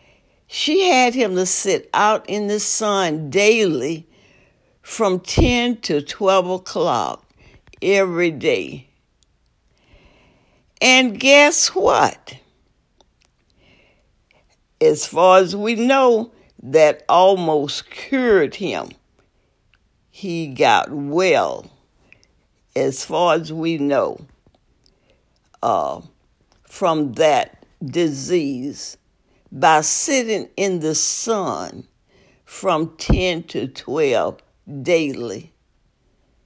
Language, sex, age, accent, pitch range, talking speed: English, female, 60-79, American, 165-245 Hz, 85 wpm